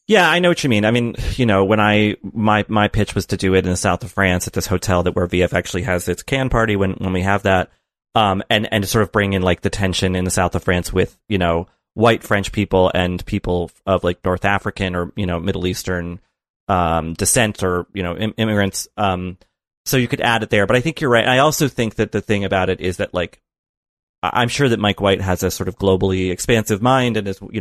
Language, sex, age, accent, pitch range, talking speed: English, male, 30-49, American, 90-115 Hz, 260 wpm